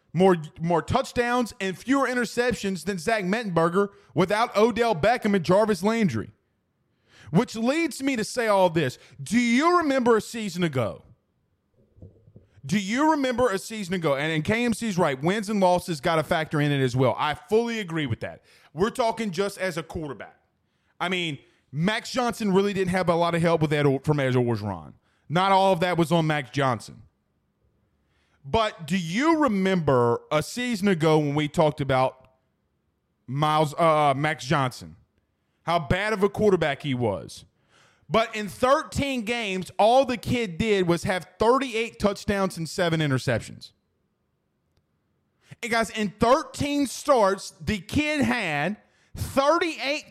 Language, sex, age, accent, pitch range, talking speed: English, male, 30-49, American, 150-225 Hz, 155 wpm